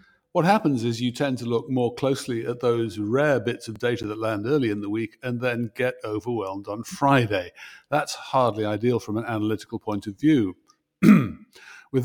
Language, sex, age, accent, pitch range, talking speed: English, male, 50-69, British, 110-140 Hz, 185 wpm